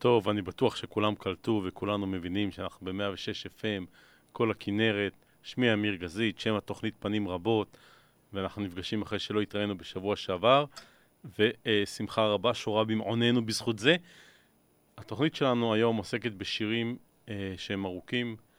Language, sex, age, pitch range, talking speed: Hebrew, male, 30-49, 95-115 Hz, 130 wpm